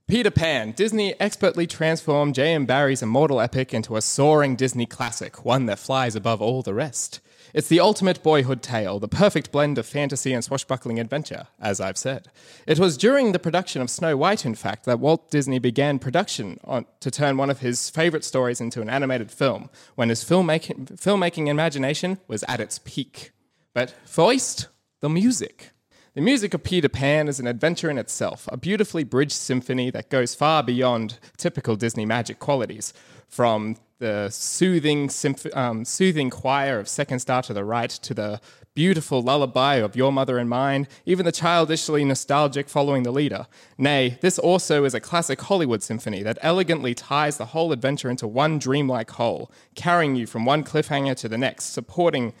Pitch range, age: 120-155 Hz, 20-39